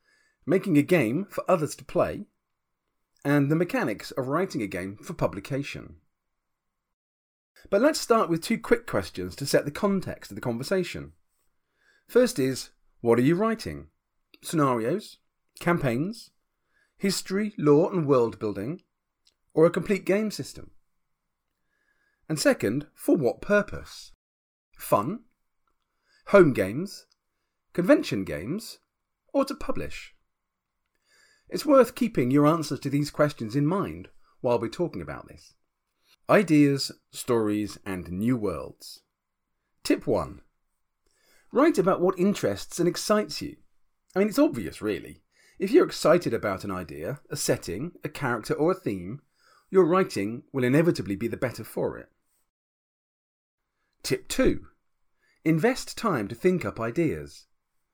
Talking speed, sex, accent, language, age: 130 wpm, male, British, English, 40-59